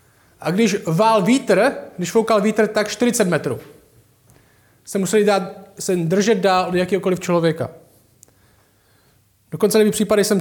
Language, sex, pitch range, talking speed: Czech, male, 135-205 Hz, 135 wpm